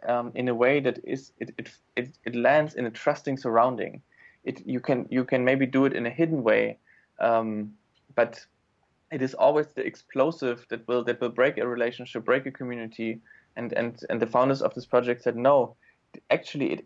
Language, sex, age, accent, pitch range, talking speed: English, male, 20-39, German, 115-140 Hz, 200 wpm